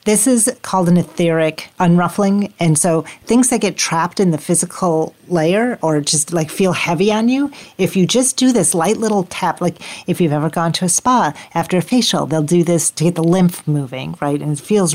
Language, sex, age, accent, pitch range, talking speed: English, female, 40-59, American, 160-205 Hz, 215 wpm